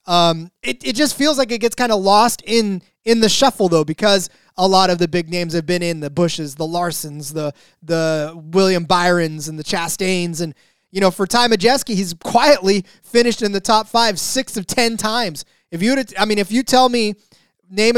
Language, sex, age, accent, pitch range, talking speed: English, male, 20-39, American, 170-220 Hz, 210 wpm